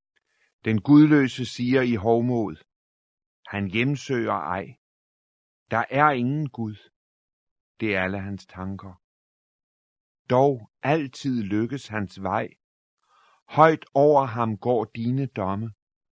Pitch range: 105-135 Hz